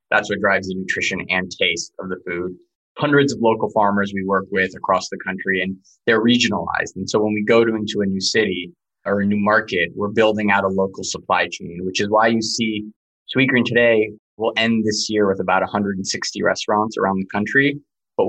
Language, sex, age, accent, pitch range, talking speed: English, male, 20-39, American, 95-115 Hz, 205 wpm